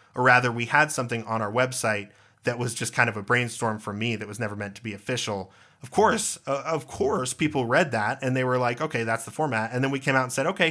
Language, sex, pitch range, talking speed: English, male, 115-140 Hz, 265 wpm